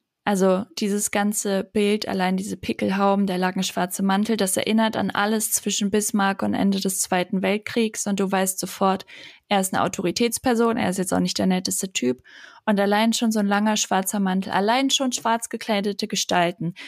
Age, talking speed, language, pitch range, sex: 20-39, 180 wpm, German, 185-215 Hz, female